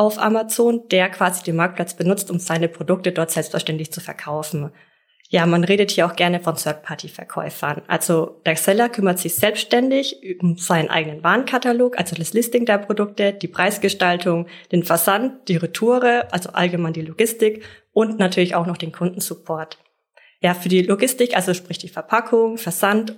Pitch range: 170-210 Hz